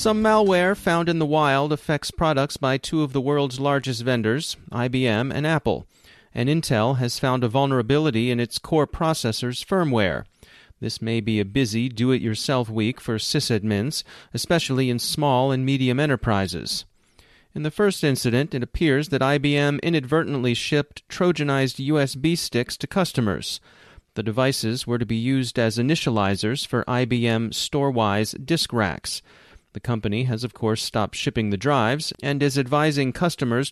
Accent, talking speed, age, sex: American, 150 wpm, 30-49, male